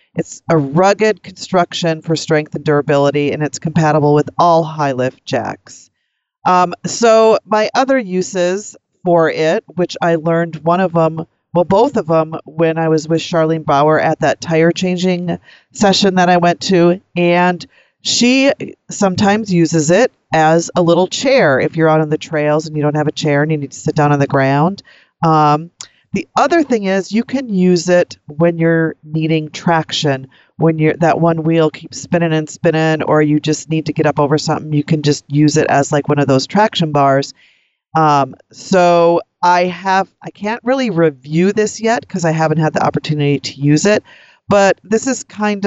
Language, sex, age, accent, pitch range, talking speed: English, female, 40-59, American, 155-185 Hz, 185 wpm